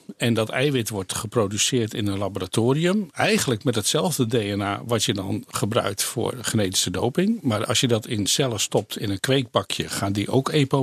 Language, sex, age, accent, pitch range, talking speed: Dutch, male, 50-69, Dutch, 110-135 Hz, 185 wpm